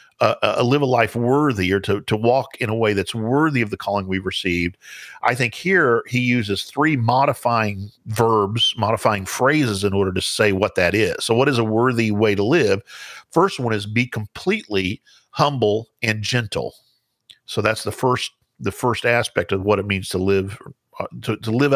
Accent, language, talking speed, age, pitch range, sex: American, English, 195 wpm, 50-69, 95-120 Hz, male